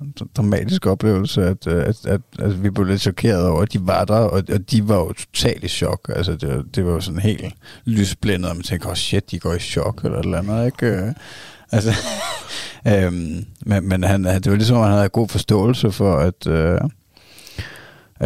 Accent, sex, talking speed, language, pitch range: native, male, 205 wpm, Danish, 90-110 Hz